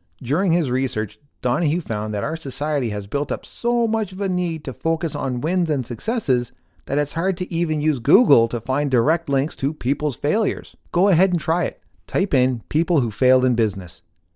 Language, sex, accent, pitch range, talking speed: English, male, American, 105-145 Hz, 200 wpm